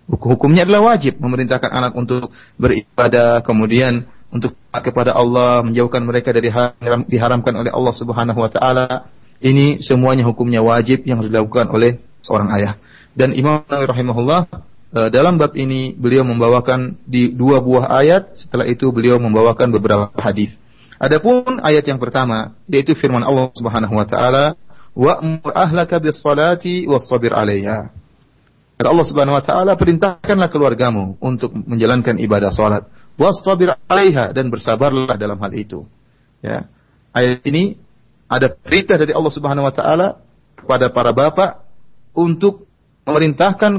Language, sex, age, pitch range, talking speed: Indonesian, male, 30-49, 120-160 Hz, 135 wpm